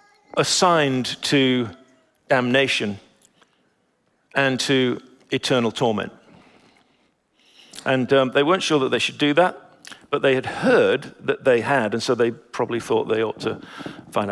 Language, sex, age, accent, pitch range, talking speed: English, male, 50-69, British, 150-210 Hz, 140 wpm